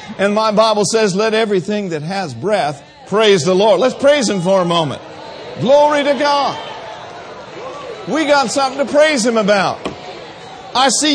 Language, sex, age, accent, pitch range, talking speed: English, male, 50-69, American, 195-280 Hz, 160 wpm